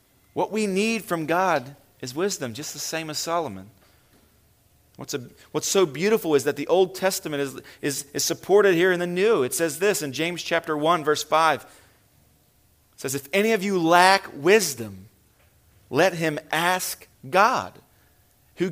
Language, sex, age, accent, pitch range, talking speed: English, male, 40-59, American, 155-220 Hz, 165 wpm